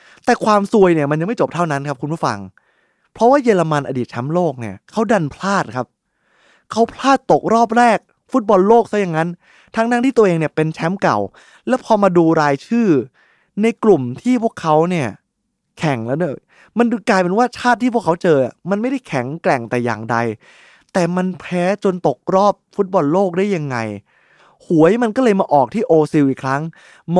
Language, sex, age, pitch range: Thai, male, 20-39, 155-205 Hz